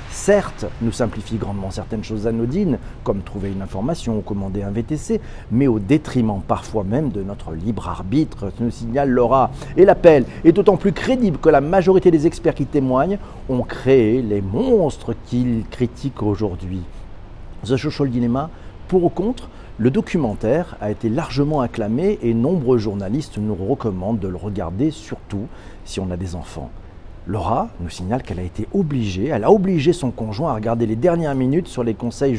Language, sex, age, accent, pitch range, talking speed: French, male, 50-69, French, 110-155 Hz, 170 wpm